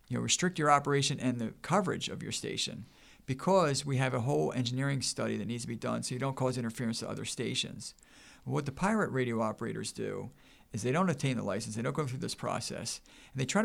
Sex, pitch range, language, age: male, 120-140 Hz, English, 50-69